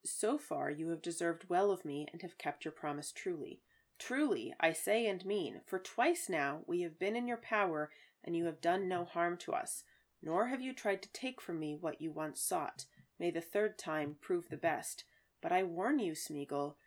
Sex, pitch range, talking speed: female, 150-215 Hz, 215 wpm